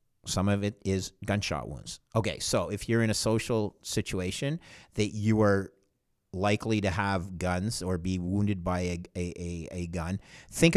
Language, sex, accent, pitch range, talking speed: English, male, American, 95-120 Hz, 175 wpm